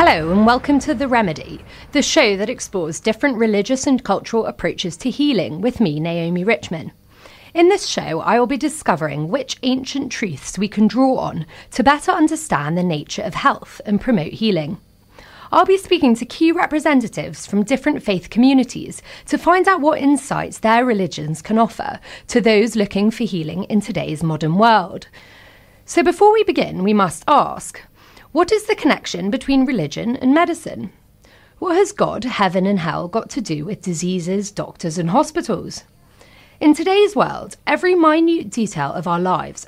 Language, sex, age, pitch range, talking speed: English, female, 30-49, 185-285 Hz, 170 wpm